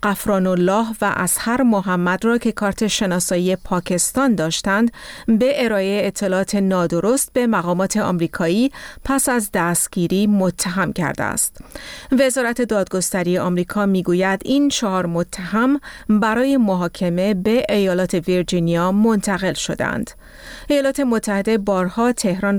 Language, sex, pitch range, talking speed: Persian, female, 185-230 Hz, 115 wpm